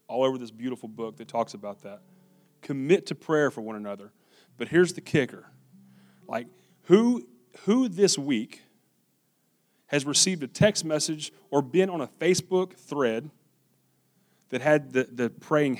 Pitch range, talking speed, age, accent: 125-175 Hz, 150 wpm, 30-49, American